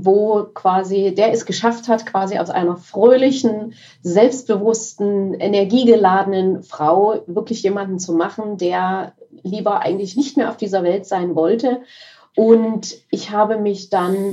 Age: 30-49